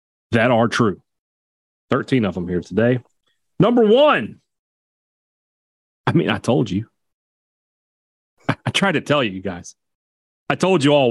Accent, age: American, 40-59